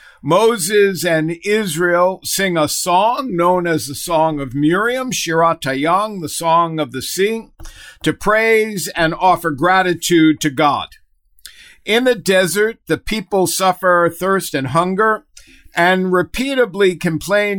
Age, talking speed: 50-69, 125 wpm